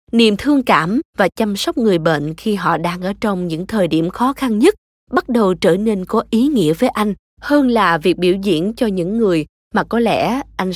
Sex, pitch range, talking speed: female, 180-245 Hz, 225 wpm